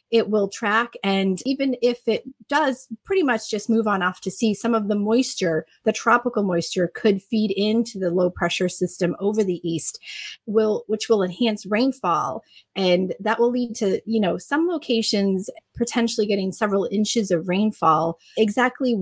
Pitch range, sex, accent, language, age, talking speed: 185-235 Hz, female, American, English, 30-49, 170 wpm